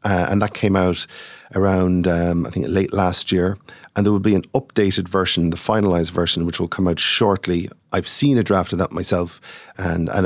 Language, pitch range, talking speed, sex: English, 90-110 Hz, 210 wpm, male